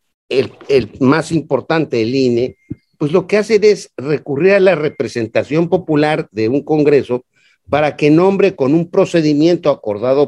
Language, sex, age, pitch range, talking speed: Spanish, male, 50-69, 130-180 Hz, 150 wpm